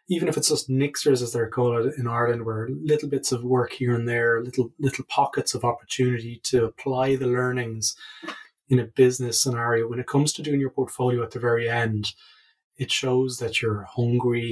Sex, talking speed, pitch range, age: male, 195 wpm, 115-135 Hz, 20-39